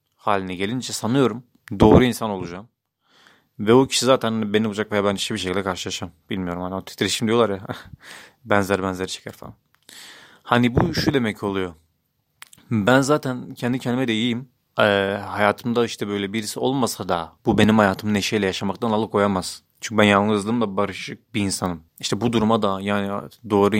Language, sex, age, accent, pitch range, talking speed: Turkish, male, 30-49, native, 100-115 Hz, 160 wpm